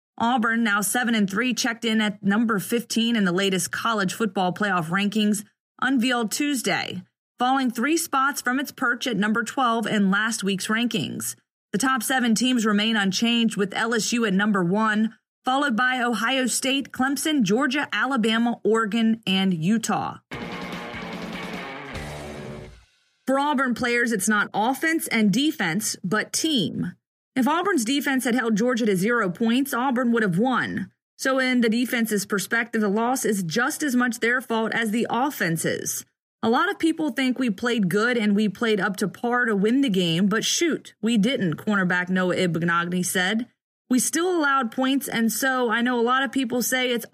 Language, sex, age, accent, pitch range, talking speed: English, female, 30-49, American, 210-255 Hz, 170 wpm